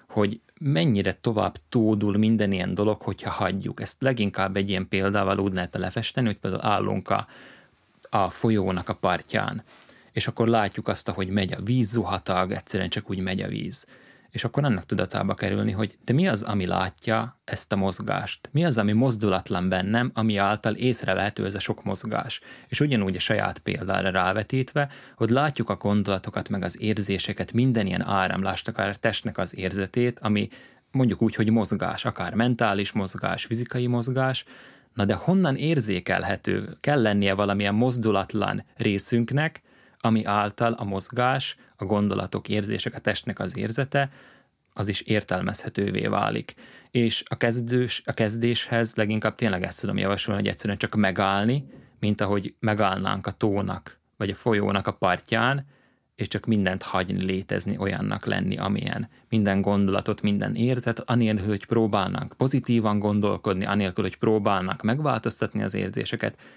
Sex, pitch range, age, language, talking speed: male, 100-115 Hz, 30-49, Hungarian, 150 wpm